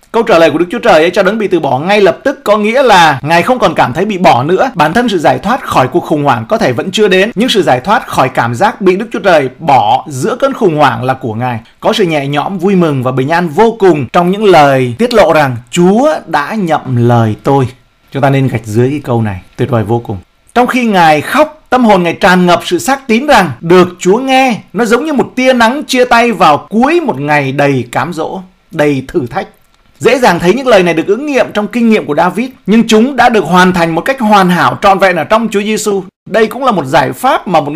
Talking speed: 265 wpm